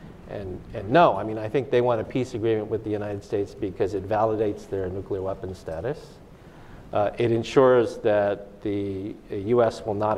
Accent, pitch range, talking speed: American, 100-115 Hz, 185 wpm